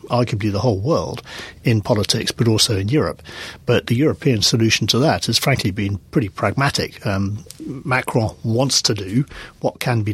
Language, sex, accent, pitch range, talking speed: English, male, British, 105-125 Hz, 170 wpm